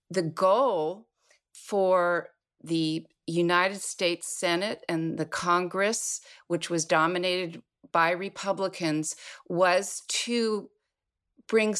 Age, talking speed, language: 50-69, 90 wpm, English